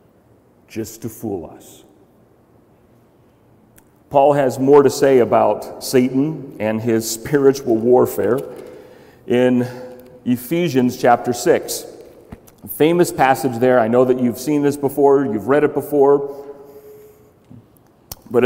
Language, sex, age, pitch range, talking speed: English, male, 40-59, 125-175 Hz, 110 wpm